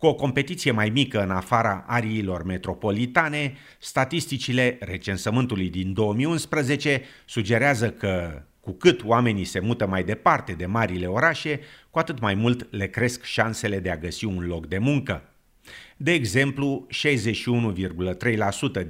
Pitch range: 95-125 Hz